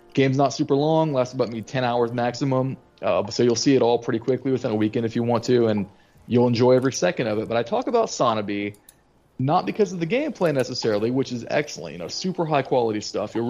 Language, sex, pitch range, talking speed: English, male, 115-150 Hz, 235 wpm